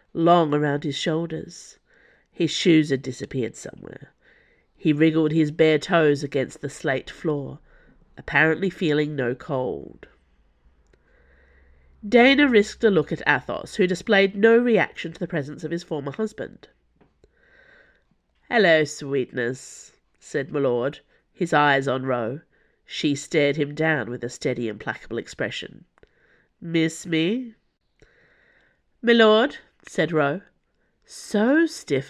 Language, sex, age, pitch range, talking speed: English, female, 50-69, 140-205 Hz, 120 wpm